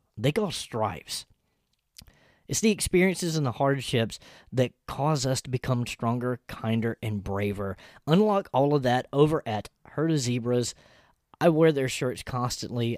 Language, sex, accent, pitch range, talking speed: English, male, American, 110-130 Hz, 150 wpm